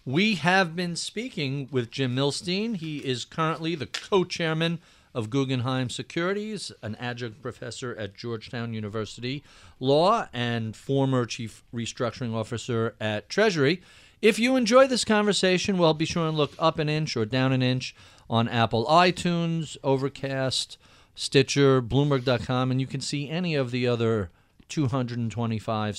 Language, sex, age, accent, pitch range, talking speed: English, male, 40-59, American, 120-175 Hz, 140 wpm